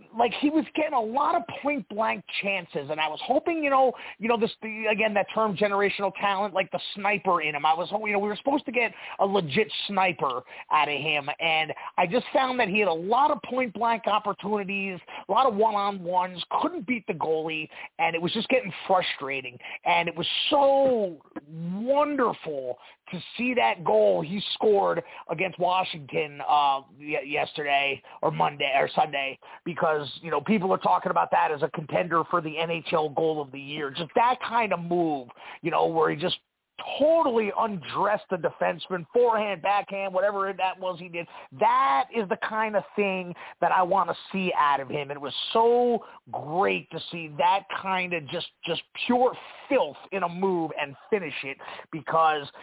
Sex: male